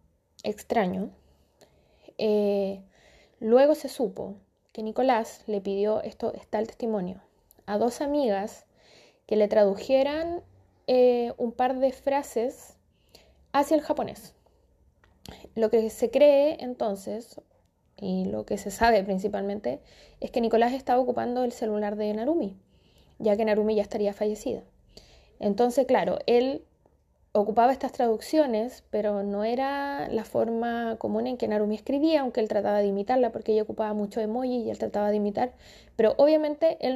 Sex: female